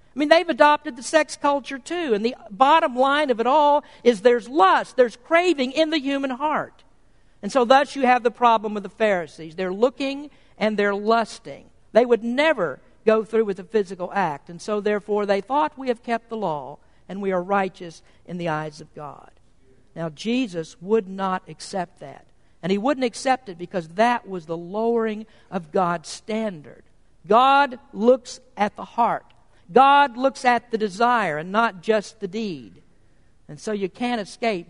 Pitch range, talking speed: 190-265 Hz, 185 wpm